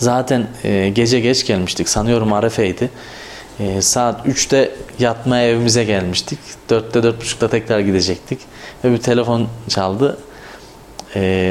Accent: native